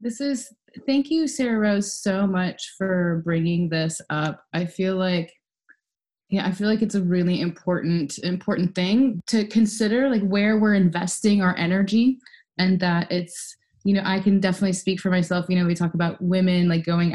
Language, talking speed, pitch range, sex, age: English, 180 wpm, 160-195 Hz, female, 20-39